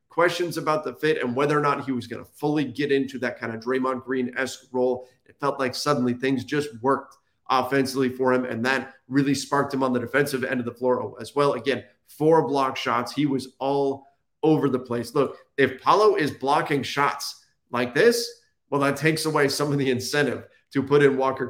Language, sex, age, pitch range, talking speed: English, male, 30-49, 125-145 Hz, 210 wpm